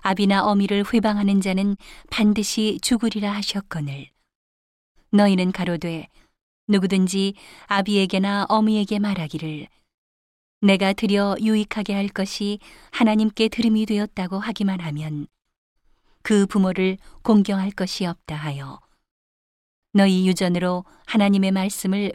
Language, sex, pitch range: Korean, female, 175-210 Hz